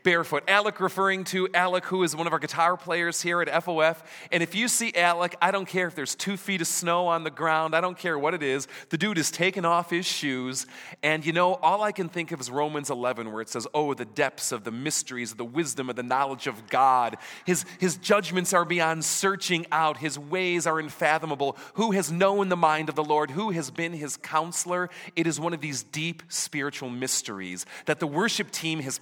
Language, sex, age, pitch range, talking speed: English, male, 30-49, 130-175 Hz, 225 wpm